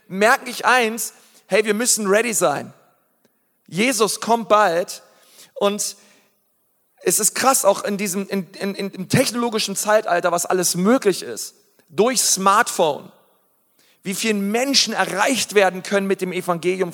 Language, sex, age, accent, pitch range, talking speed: German, male, 40-59, German, 185-225 Hz, 135 wpm